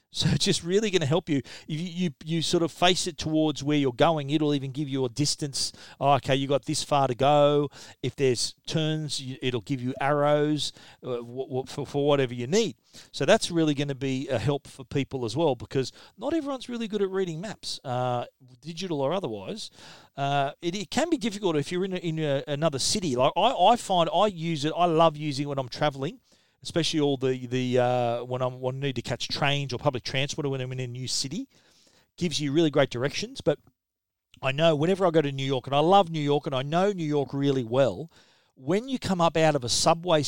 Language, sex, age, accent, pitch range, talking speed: English, male, 40-59, Australian, 130-165 Hz, 230 wpm